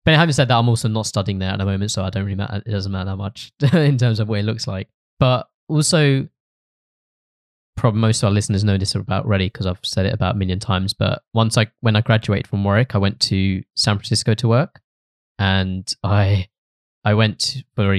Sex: male